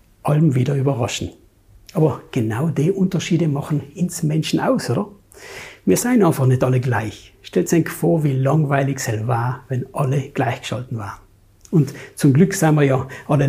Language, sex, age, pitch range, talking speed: German, male, 60-79, 130-170 Hz, 160 wpm